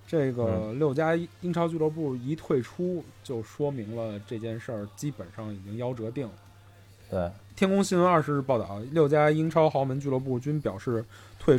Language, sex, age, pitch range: Chinese, male, 20-39, 105-145 Hz